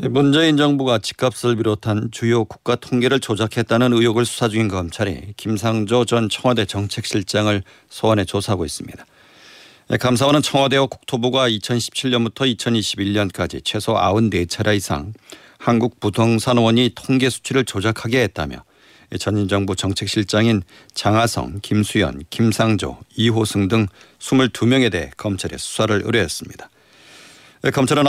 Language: Korean